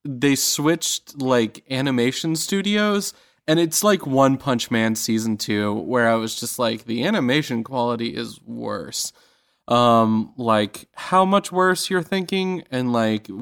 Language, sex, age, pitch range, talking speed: English, male, 20-39, 105-125 Hz, 145 wpm